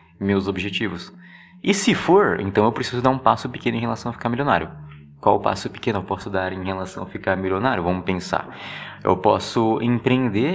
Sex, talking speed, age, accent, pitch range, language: male, 190 wpm, 20-39, Brazilian, 95-130 Hz, Portuguese